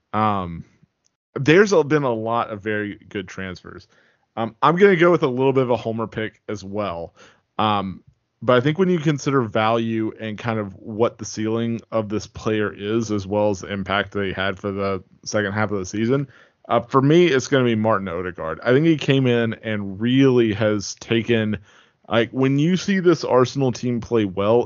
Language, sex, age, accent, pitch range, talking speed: English, male, 20-39, American, 100-135 Hz, 205 wpm